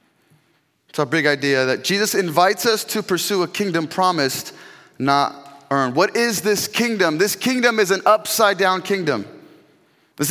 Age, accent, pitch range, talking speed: 20-39, American, 155-215 Hz, 150 wpm